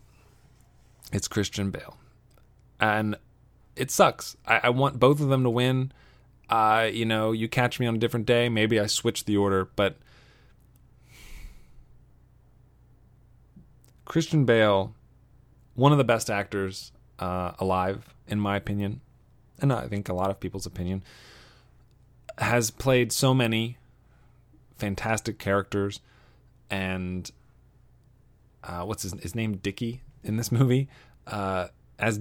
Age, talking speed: 30-49, 125 wpm